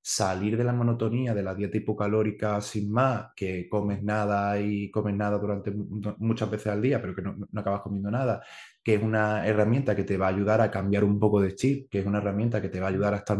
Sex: male